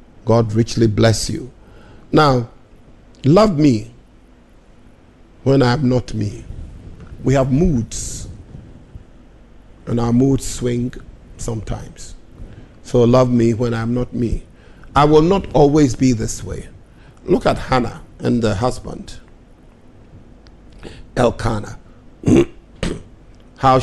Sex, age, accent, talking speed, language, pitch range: male, 50-69, Nigerian, 105 wpm, English, 110-125 Hz